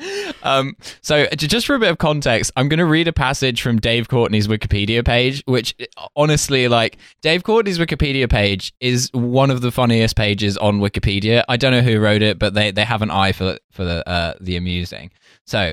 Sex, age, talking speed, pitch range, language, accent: male, 10-29, 200 wpm, 100-130 Hz, English, British